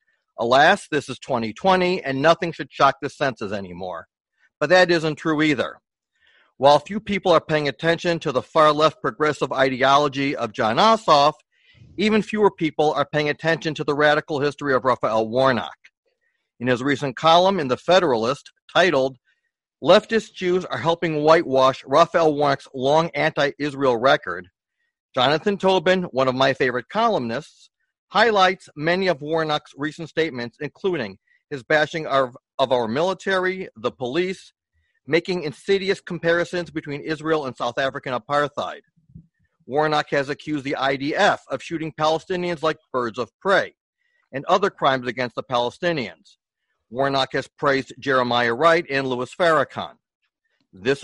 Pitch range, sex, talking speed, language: 135-180 Hz, male, 140 wpm, English